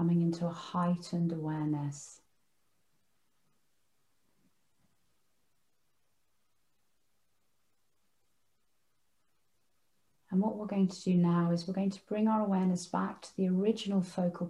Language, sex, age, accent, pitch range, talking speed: English, female, 40-59, British, 165-190 Hz, 100 wpm